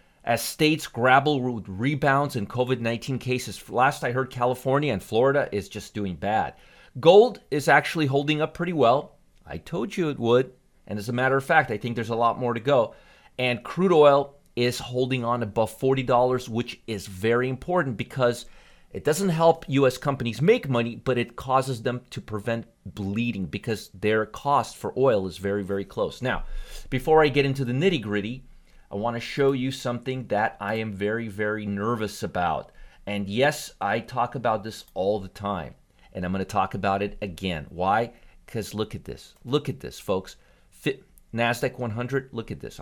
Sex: male